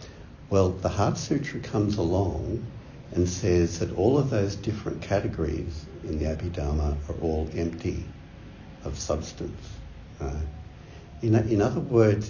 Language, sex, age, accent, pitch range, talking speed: English, male, 60-79, Australian, 80-105 Hz, 130 wpm